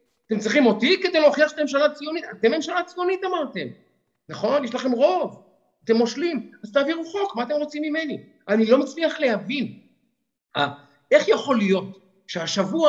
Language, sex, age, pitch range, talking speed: Hebrew, male, 50-69, 215-275 Hz, 155 wpm